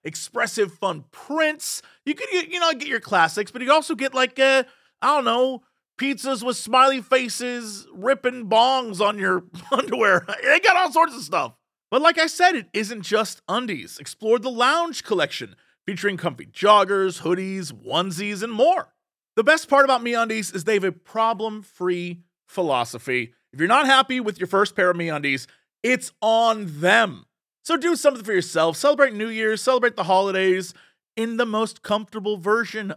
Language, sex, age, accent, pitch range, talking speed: English, male, 30-49, American, 175-260 Hz, 170 wpm